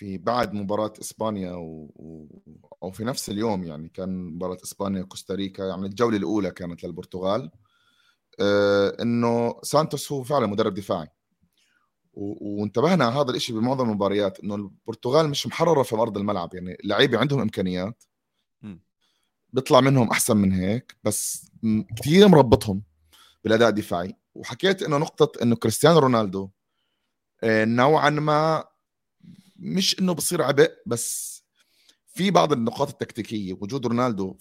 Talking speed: 130 wpm